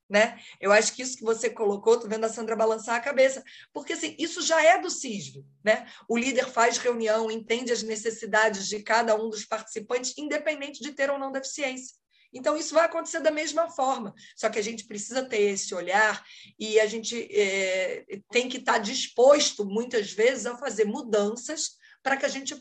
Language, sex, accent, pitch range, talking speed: Portuguese, female, Brazilian, 215-280 Hz, 185 wpm